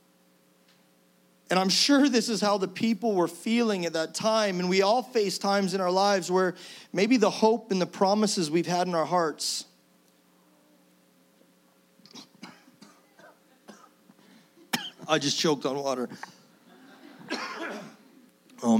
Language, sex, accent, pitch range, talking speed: English, male, American, 145-190 Hz, 125 wpm